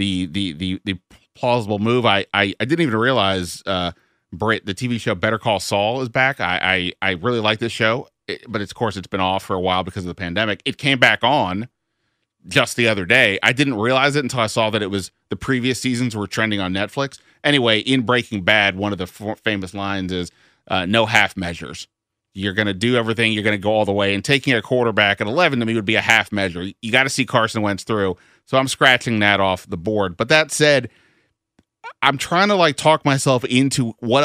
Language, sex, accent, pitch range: English, male, American, 100-125 Hz